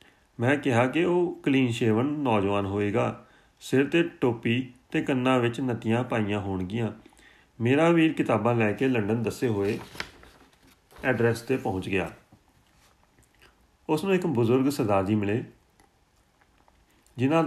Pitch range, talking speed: 110-140 Hz, 125 wpm